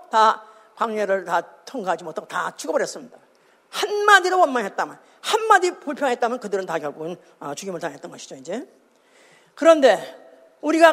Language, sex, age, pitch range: Korean, female, 50-69, 215-320 Hz